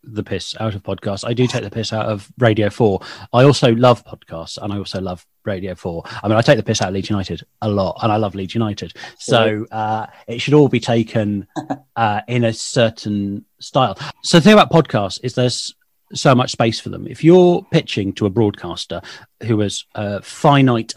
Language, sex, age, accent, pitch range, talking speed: English, male, 30-49, British, 100-125 Hz, 215 wpm